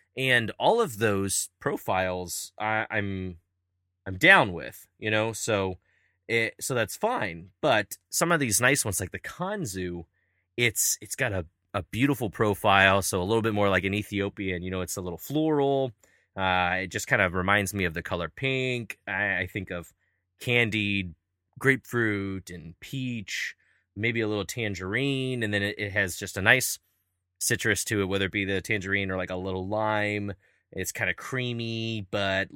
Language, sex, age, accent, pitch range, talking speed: English, male, 20-39, American, 95-110 Hz, 180 wpm